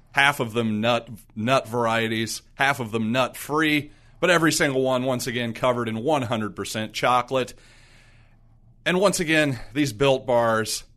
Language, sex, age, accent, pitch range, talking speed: English, male, 40-59, American, 115-145 Hz, 150 wpm